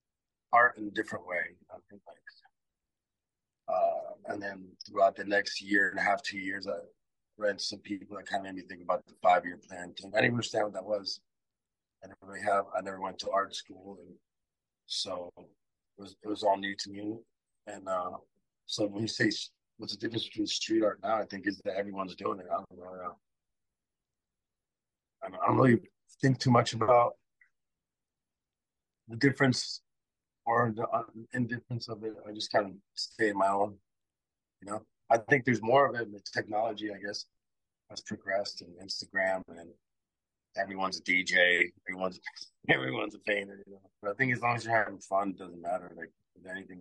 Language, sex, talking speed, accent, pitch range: English, male, 190 wpm, American, 95-115 Hz